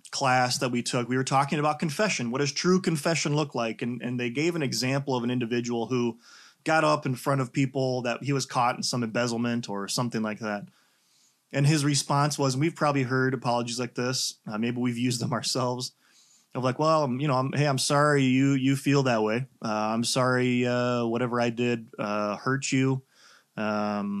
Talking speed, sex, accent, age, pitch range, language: 205 wpm, male, American, 20-39, 120-140 Hz, English